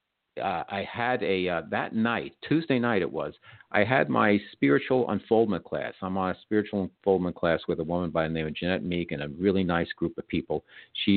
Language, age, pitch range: English, 50-69, 85-110 Hz